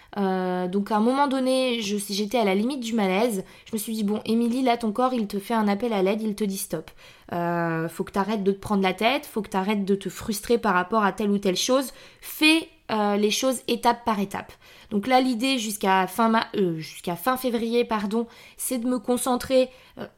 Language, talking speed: French, 235 wpm